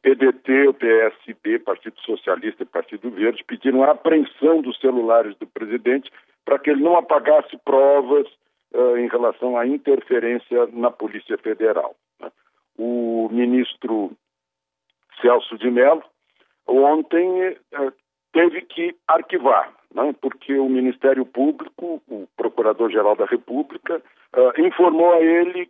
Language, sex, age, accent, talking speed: Portuguese, male, 60-79, Brazilian, 115 wpm